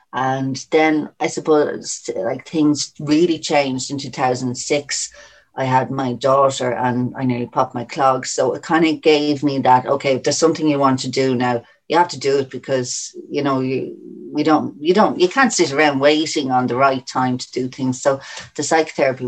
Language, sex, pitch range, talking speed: English, female, 125-145 Hz, 195 wpm